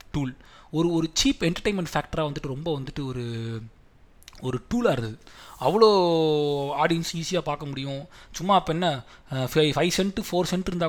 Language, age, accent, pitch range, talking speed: Tamil, 20-39, native, 135-185 Hz, 140 wpm